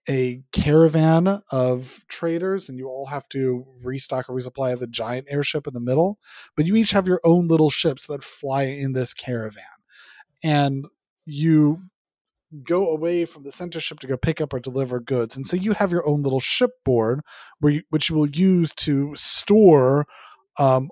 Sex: male